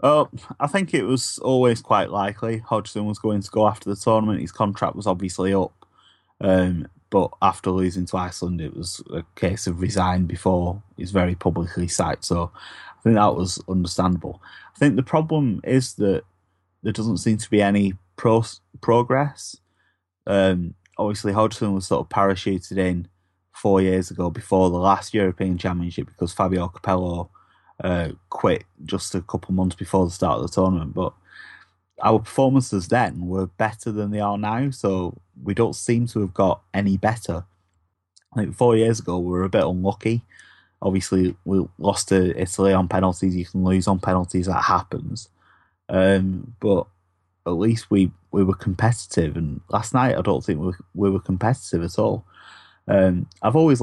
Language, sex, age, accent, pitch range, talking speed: English, male, 20-39, British, 90-110 Hz, 175 wpm